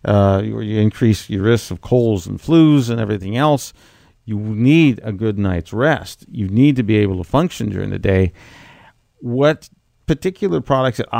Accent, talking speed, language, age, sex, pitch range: American, 175 wpm, English, 50-69, male, 105-135 Hz